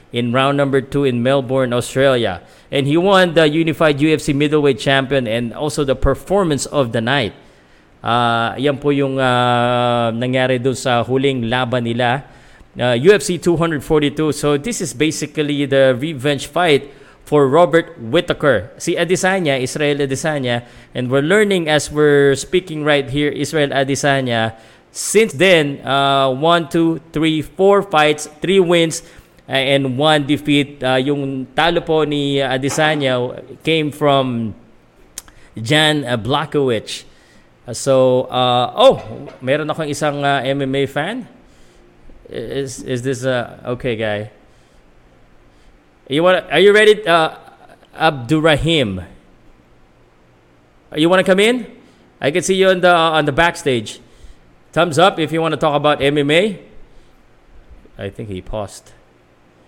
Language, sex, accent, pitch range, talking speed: Filipino, male, native, 125-155 Hz, 135 wpm